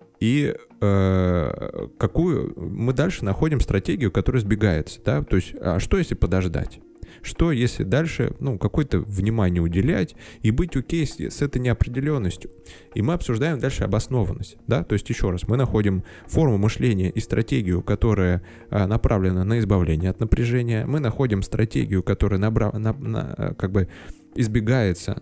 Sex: male